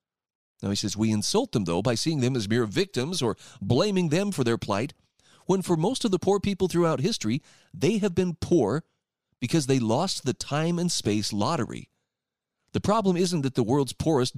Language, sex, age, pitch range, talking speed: English, male, 40-59, 110-155 Hz, 195 wpm